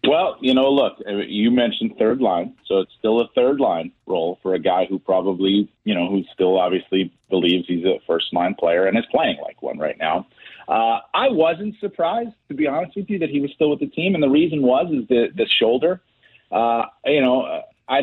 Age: 40-59